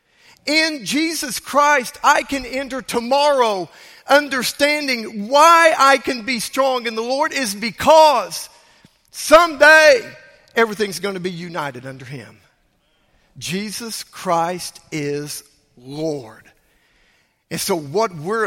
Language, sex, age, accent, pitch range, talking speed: English, male, 50-69, American, 165-260 Hz, 110 wpm